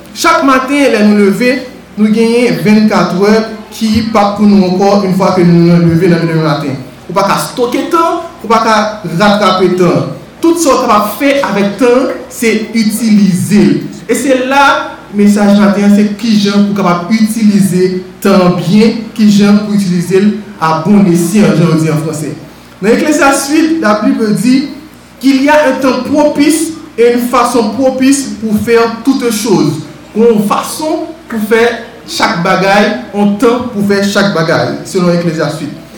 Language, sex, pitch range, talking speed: French, male, 195-250 Hz, 185 wpm